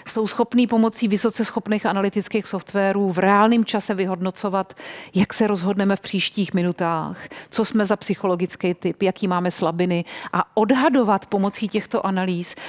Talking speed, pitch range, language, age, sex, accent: 140 wpm, 185-215 Hz, Czech, 40-59, female, native